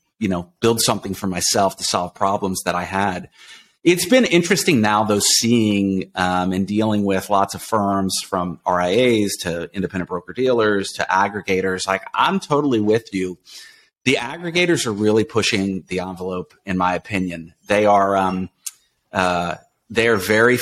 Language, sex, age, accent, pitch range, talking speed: English, male, 30-49, American, 95-115 Hz, 155 wpm